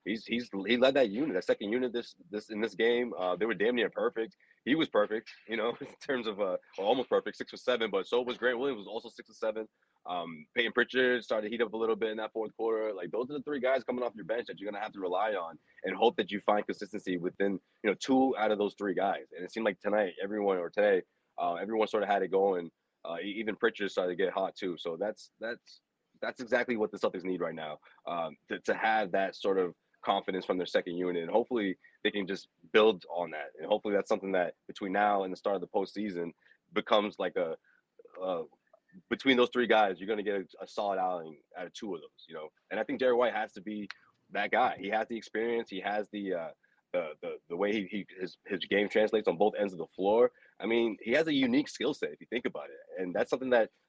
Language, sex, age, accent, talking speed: English, male, 20-39, American, 260 wpm